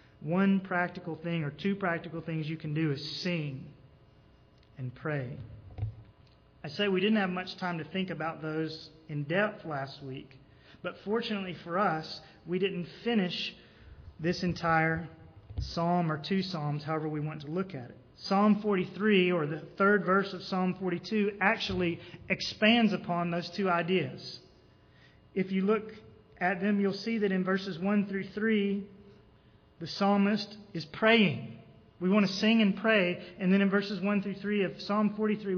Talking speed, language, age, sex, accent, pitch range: 160 wpm, English, 30-49, male, American, 155-200 Hz